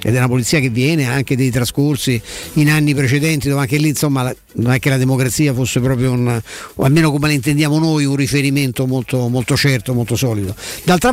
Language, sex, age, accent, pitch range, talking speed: Italian, male, 50-69, native, 130-160 Hz, 210 wpm